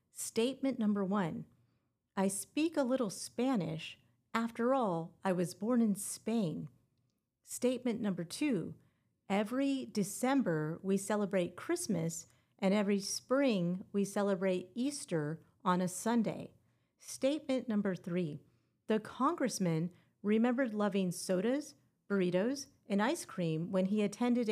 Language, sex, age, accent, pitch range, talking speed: English, female, 50-69, American, 175-250 Hz, 115 wpm